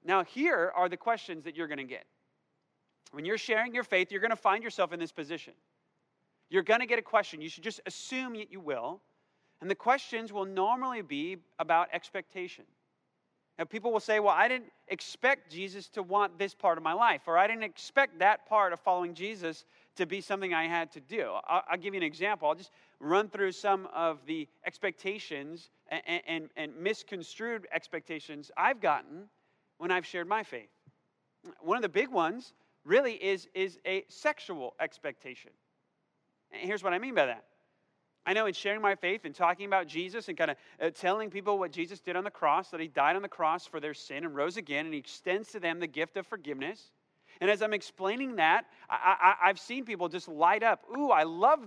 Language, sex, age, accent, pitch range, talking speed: English, male, 30-49, American, 170-215 Hz, 205 wpm